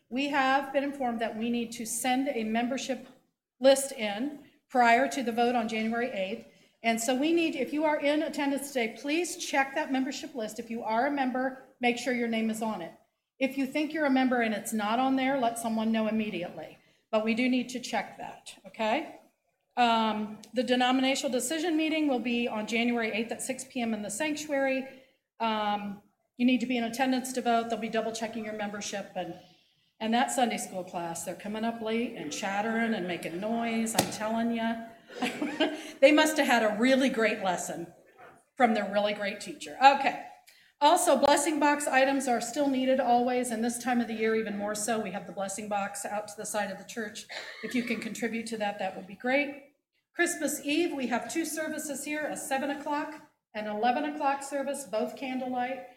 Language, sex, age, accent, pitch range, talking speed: English, female, 40-59, American, 220-275 Hz, 200 wpm